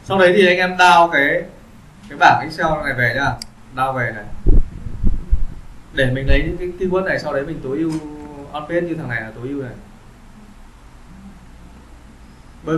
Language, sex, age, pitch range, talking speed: Vietnamese, male, 20-39, 125-180 Hz, 175 wpm